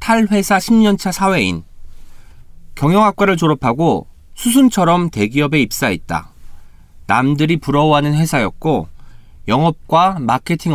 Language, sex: Korean, male